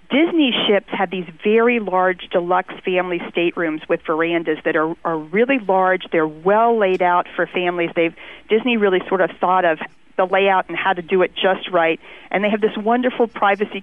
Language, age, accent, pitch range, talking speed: English, 40-59, American, 180-220 Hz, 185 wpm